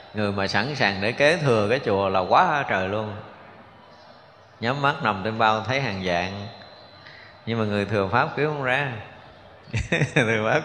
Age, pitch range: 20-39, 100-125 Hz